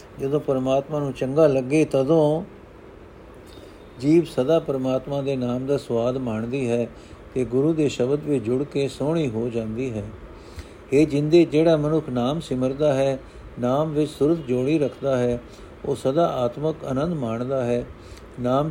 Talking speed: 150 wpm